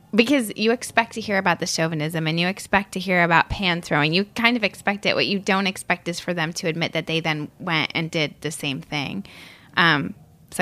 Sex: female